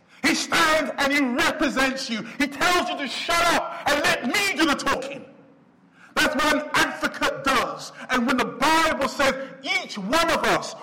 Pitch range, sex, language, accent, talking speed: 180-300 Hz, male, English, British, 175 wpm